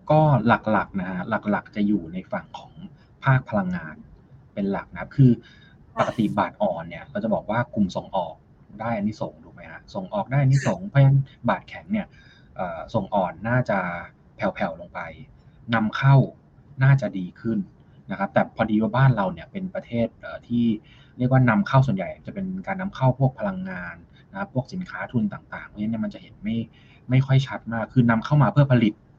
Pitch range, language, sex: 110-140 Hz, Thai, male